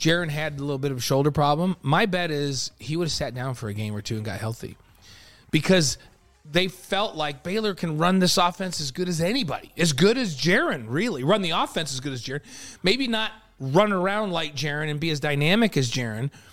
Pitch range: 140-185 Hz